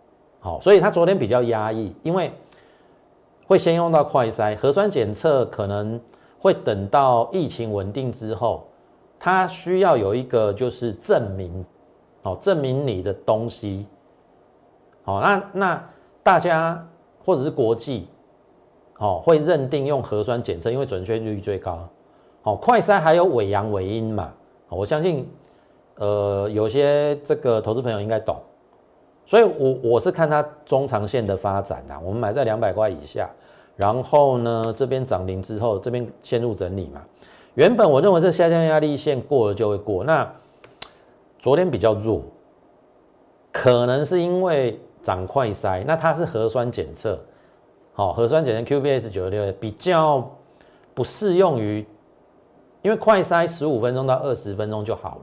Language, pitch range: Chinese, 105-160 Hz